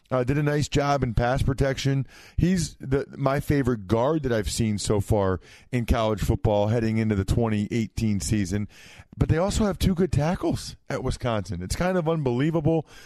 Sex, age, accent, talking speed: male, 40-59, American, 180 wpm